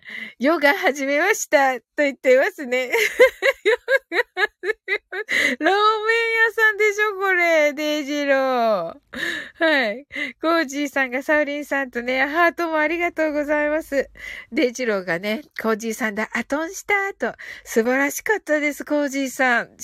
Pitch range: 205-300 Hz